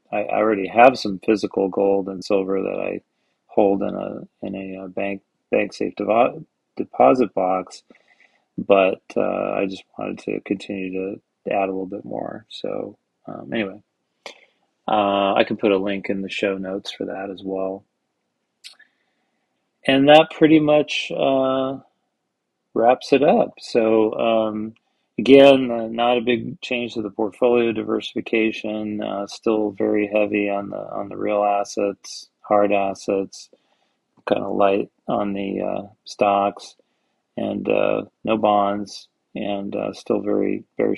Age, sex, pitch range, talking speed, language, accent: 40-59, male, 100-110 Hz, 145 wpm, English, American